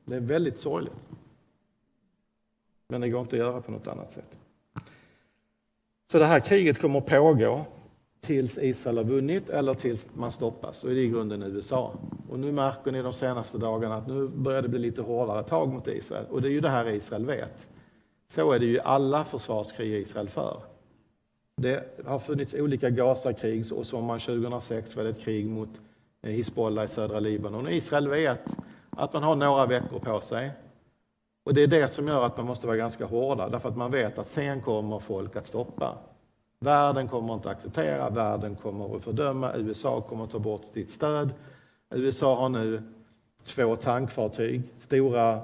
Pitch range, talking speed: 110-135 Hz, 185 wpm